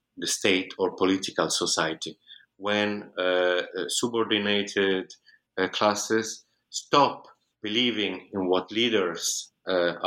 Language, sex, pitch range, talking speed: English, male, 95-110 Hz, 100 wpm